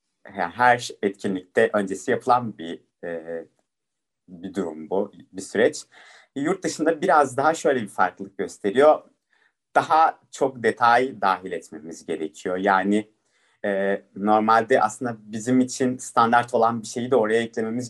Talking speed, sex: 130 wpm, male